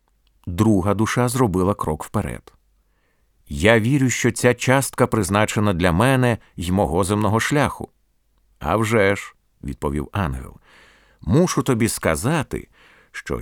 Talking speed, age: 125 wpm, 50-69